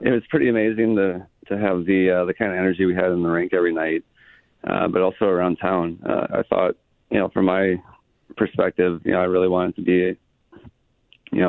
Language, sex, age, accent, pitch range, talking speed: English, male, 40-59, American, 90-95 Hz, 215 wpm